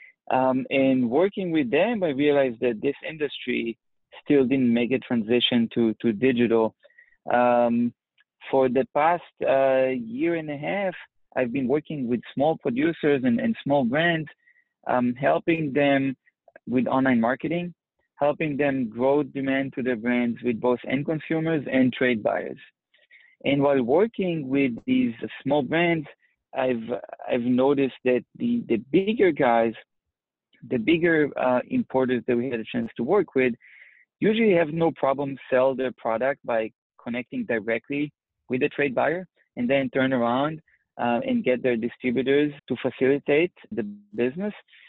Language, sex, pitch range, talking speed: English, male, 125-165 Hz, 150 wpm